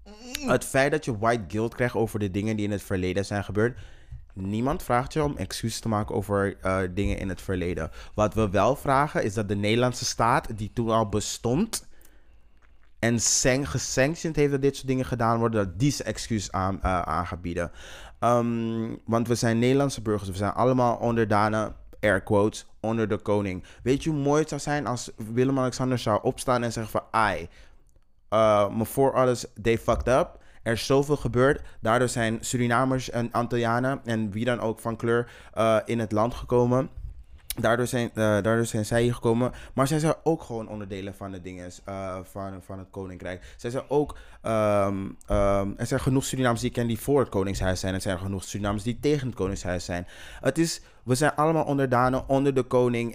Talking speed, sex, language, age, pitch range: 195 wpm, male, Dutch, 20-39, 100-125 Hz